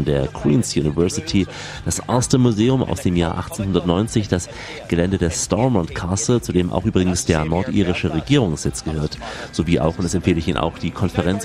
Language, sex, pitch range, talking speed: German, male, 85-110 Hz, 175 wpm